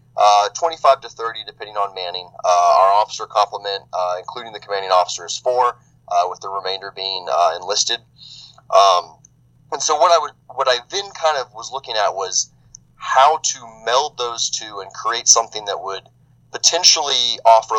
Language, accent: English, American